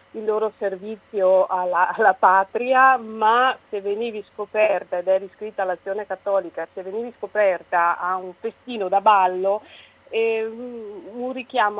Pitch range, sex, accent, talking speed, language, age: 185-220 Hz, female, native, 130 wpm, Italian, 30-49